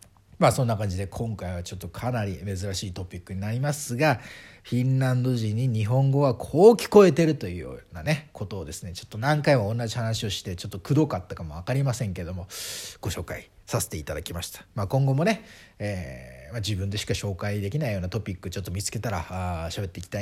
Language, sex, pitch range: Japanese, male, 95-135 Hz